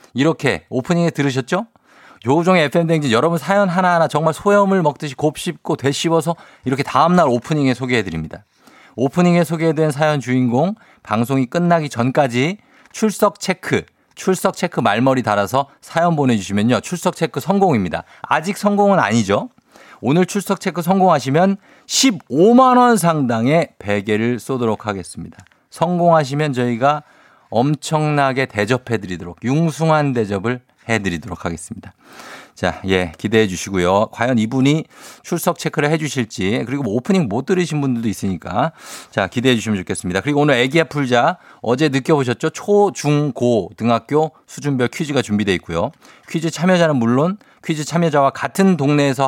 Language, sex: Korean, male